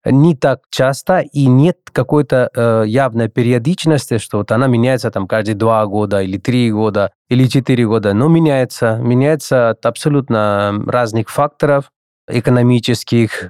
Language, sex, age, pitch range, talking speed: Russian, male, 20-39, 110-125 Hz, 140 wpm